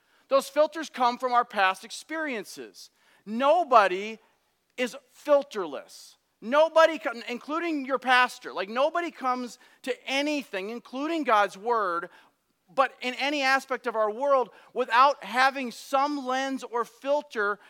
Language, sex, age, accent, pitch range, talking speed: English, male, 40-59, American, 225-280 Hz, 120 wpm